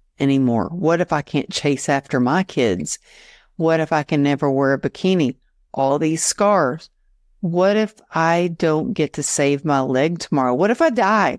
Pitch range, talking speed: 135-175 Hz, 180 wpm